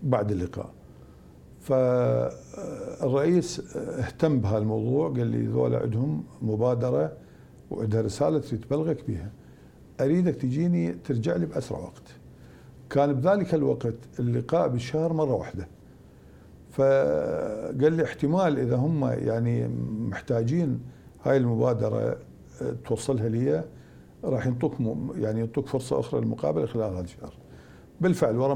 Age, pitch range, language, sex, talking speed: 50-69, 105-150 Hz, Arabic, male, 105 wpm